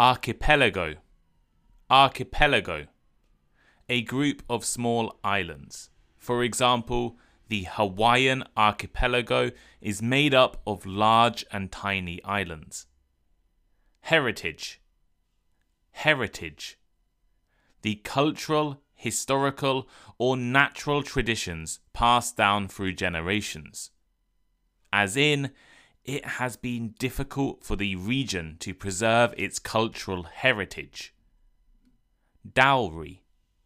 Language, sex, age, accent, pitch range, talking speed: English, male, 20-39, British, 85-125 Hz, 85 wpm